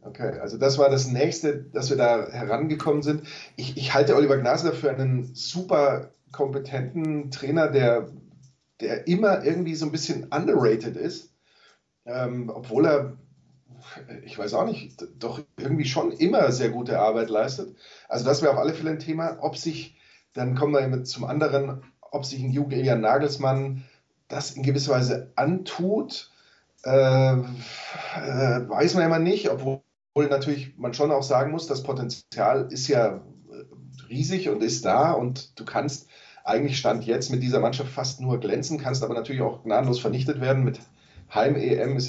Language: German